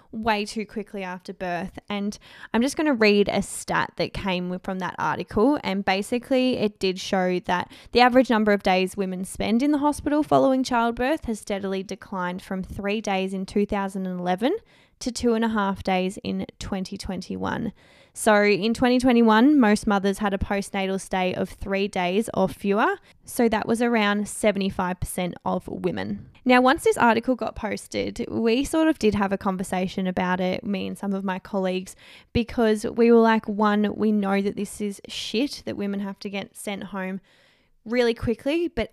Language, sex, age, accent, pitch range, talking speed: English, female, 10-29, Australian, 190-230 Hz, 175 wpm